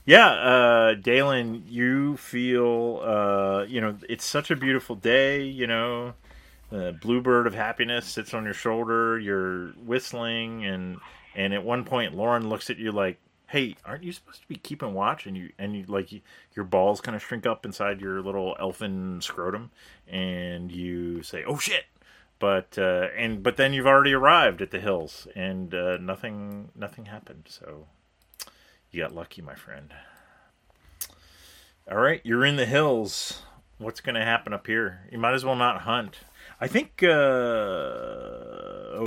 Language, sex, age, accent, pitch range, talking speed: English, male, 30-49, American, 90-120 Hz, 165 wpm